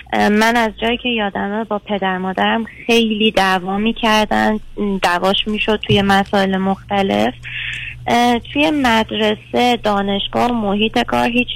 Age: 30-49